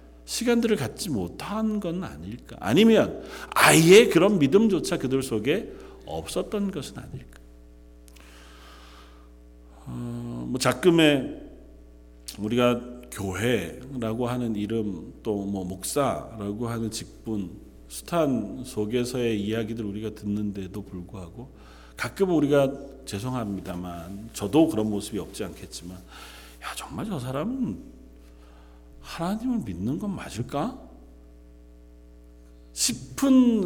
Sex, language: male, Korean